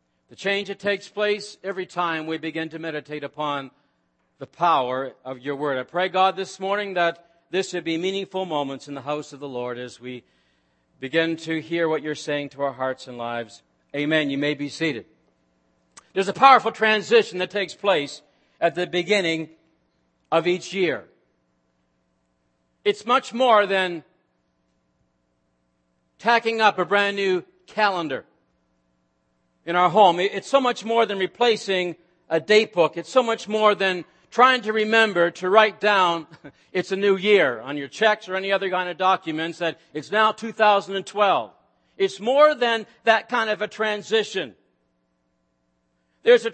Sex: male